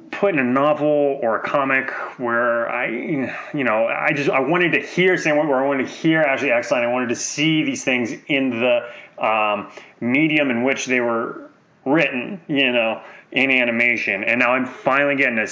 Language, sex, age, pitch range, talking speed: English, male, 20-39, 130-185 Hz, 195 wpm